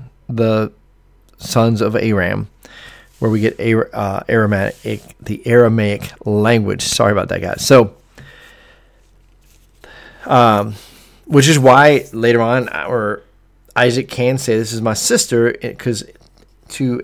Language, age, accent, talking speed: English, 40-59, American, 120 wpm